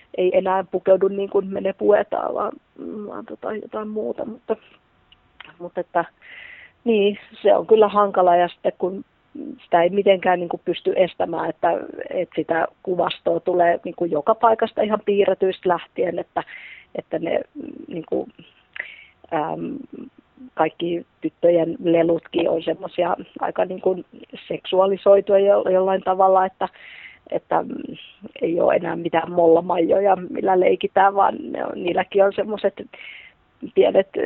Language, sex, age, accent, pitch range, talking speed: Finnish, female, 30-49, native, 175-215 Hz, 125 wpm